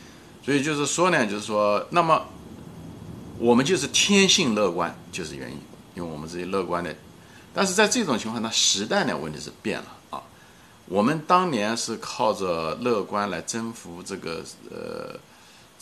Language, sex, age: Chinese, male, 50-69